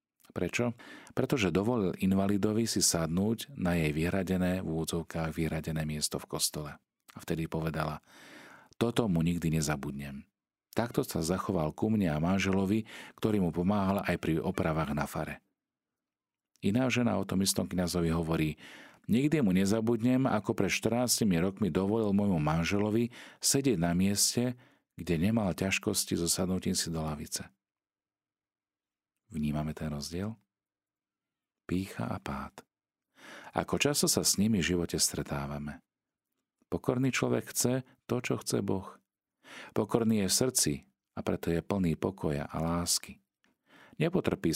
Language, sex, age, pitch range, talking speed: Slovak, male, 40-59, 80-105 Hz, 130 wpm